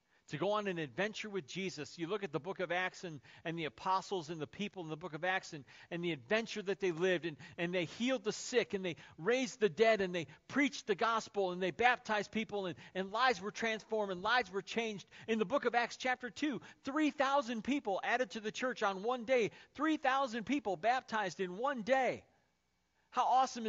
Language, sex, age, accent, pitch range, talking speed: English, male, 40-59, American, 145-220 Hz, 220 wpm